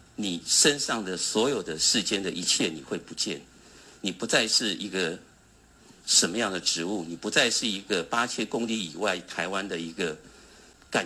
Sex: male